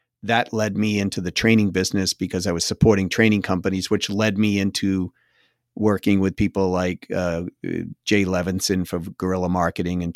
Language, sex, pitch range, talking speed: English, male, 95-120 Hz, 165 wpm